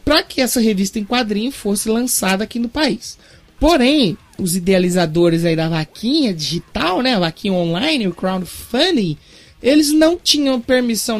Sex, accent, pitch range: male, Brazilian, 185-260 Hz